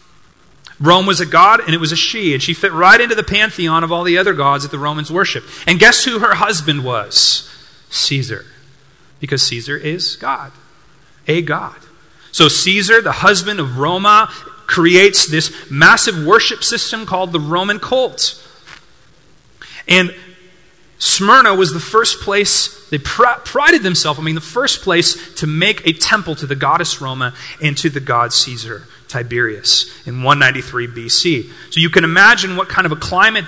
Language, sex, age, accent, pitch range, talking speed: English, male, 30-49, American, 150-205 Hz, 170 wpm